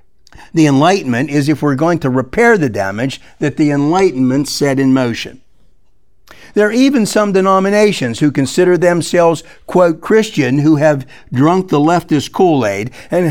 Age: 60-79